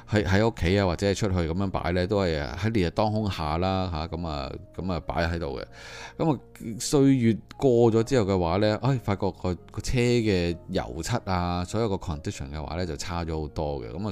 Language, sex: Chinese, male